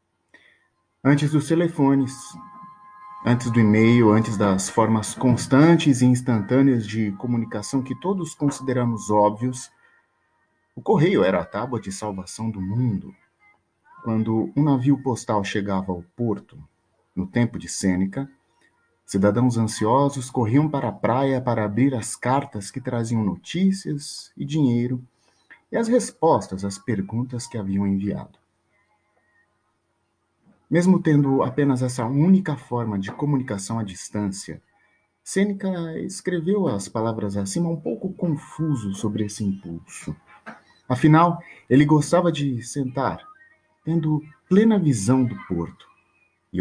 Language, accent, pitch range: English, Brazilian, 105-150 Hz